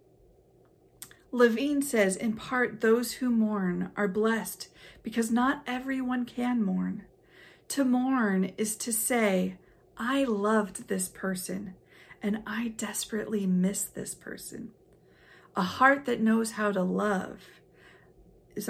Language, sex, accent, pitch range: English, female, American, 185-225 Hz